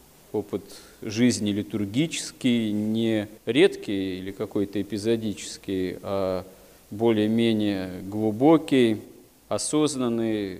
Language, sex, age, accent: Russian, male, 40-59, native